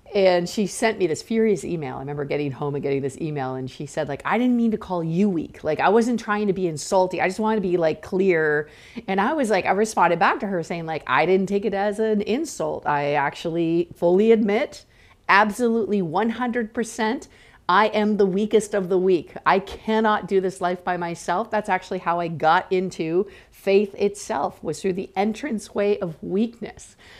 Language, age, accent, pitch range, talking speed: English, 50-69, American, 165-215 Hz, 205 wpm